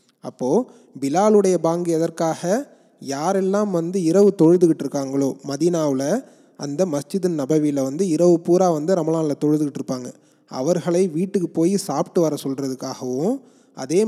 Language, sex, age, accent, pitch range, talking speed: Tamil, male, 30-49, native, 140-185 Hz, 105 wpm